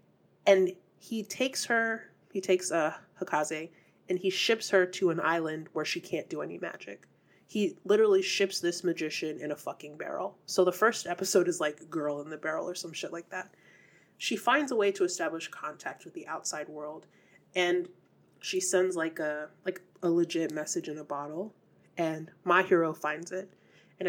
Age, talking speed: 30-49, 180 wpm